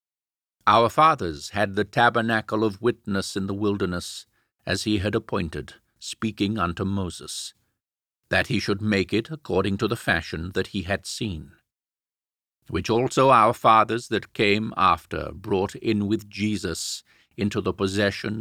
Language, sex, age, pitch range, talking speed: English, male, 50-69, 85-110 Hz, 145 wpm